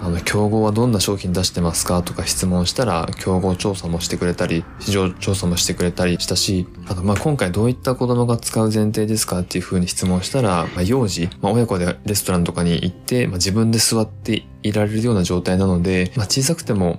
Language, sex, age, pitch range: Japanese, male, 20-39, 90-110 Hz